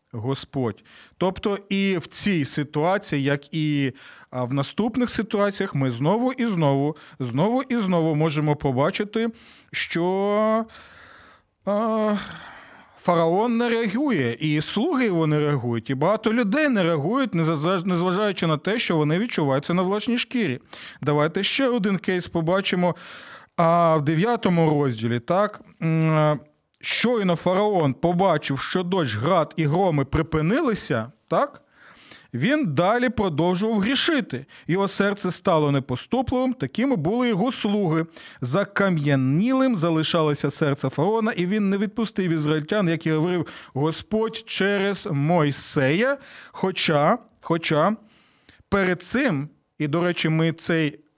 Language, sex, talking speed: Ukrainian, male, 115 wpm